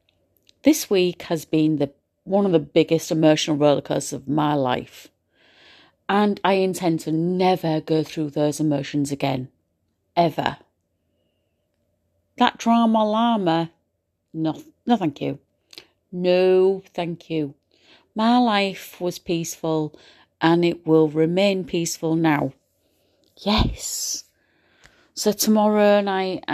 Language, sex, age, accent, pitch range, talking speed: English, female, 40-59, British, 150-185 Hz, 115 wpm